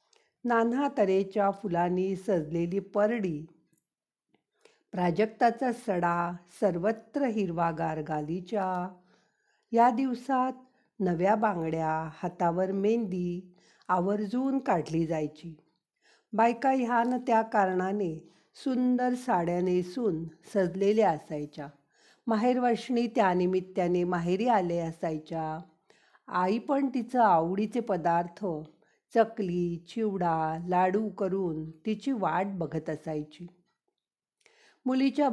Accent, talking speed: native, 80 wpm